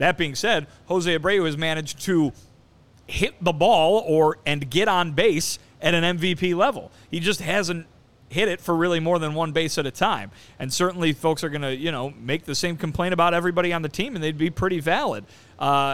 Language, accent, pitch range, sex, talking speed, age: English, American, 135-165 Hz, male, 215 wpm, 30-49